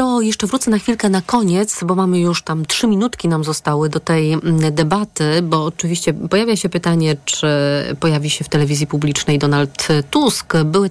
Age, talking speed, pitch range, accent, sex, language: 30-49, 170 wpm, 150-180 Hz, native, female, Polish